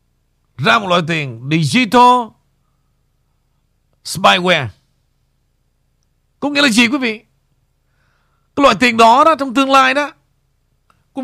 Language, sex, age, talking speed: Vietnamese, male, 50-69, 115 wpm